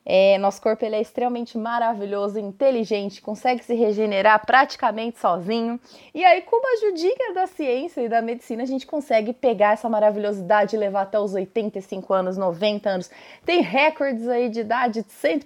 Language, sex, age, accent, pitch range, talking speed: Portuguese, female, 20-39, Brazilian, 210-280 Hz, 175 wpm